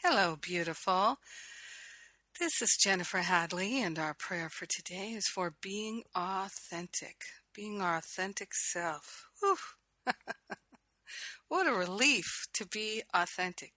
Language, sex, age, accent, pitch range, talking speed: English, female, 50-69, American, 170-195 Hz, 110 wpm